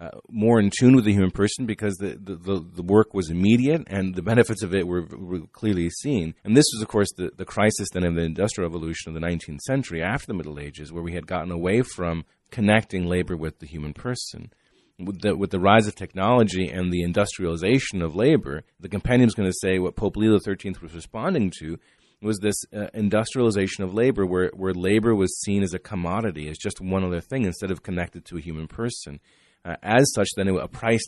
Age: 30-49